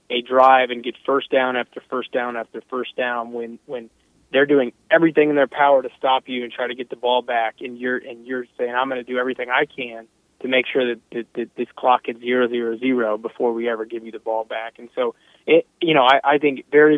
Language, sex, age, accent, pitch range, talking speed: English, male, 30-49, American, 120-135 Hz, 250 wpm